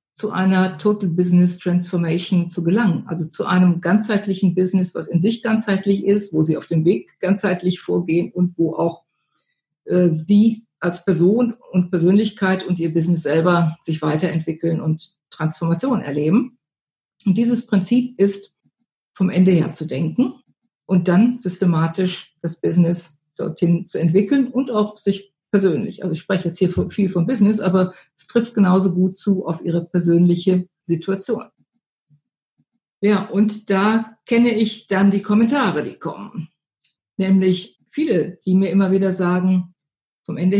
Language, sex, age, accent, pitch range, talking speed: German, female, 50-69, German, 170-200 Hz, 150 wpm